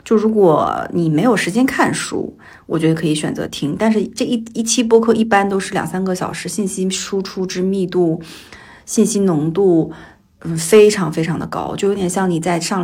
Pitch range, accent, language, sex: 170-220 Hz, native, Chinese, female